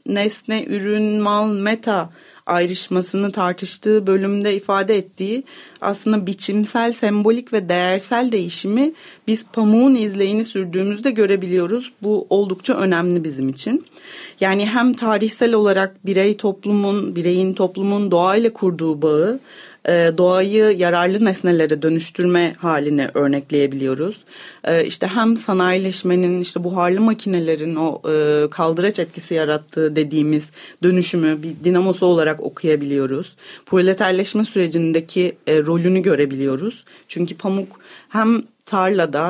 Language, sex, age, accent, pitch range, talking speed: Turkish, female, 30-49, native, 165-215 Hz, 100 wpm